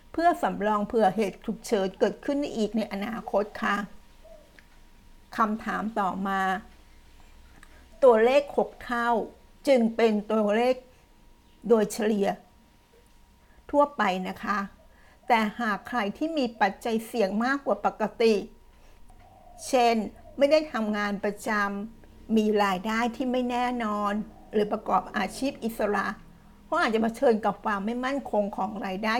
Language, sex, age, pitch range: Thai, female, 60-79, 210-245 Hz